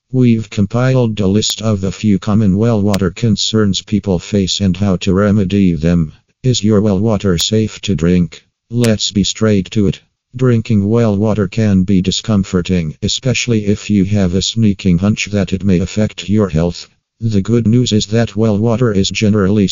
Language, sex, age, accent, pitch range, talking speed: English, male, 50-69, American, 95-110 Hz, 175 wpm